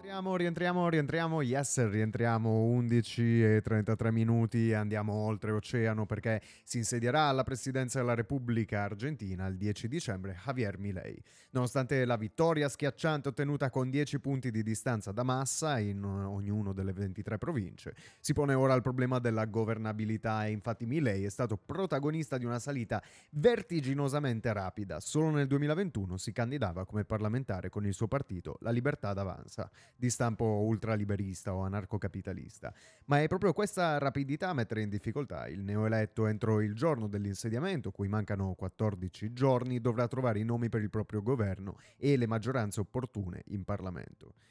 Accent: native